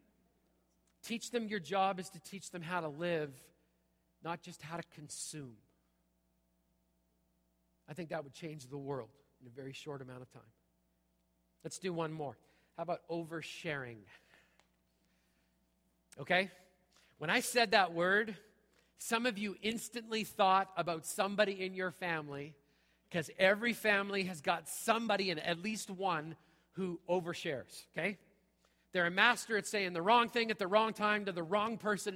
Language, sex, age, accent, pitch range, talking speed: English, male, 40-59, American, 150-205 Hz, 155 wpm